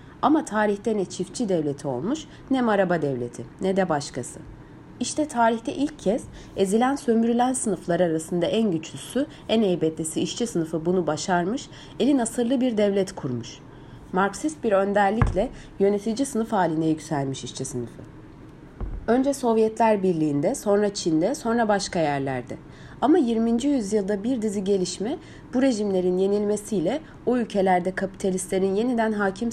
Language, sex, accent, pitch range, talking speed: Turkish, female, native, 170-235 Hz, 130 wpm